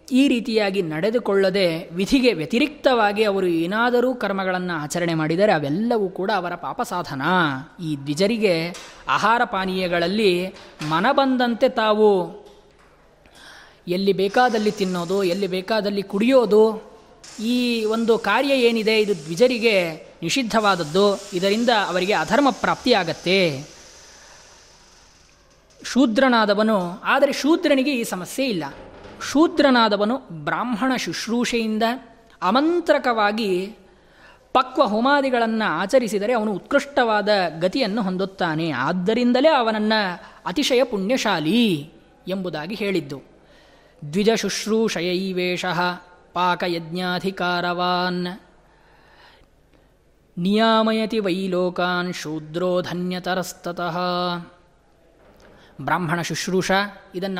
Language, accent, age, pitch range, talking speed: Kannada, native, 20-39, 180-230 Hz, 65 wpm